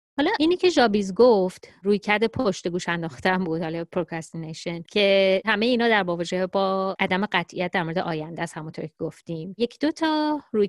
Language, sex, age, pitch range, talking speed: Persian, female, 30-49, 175-230 Hz, 185 wpm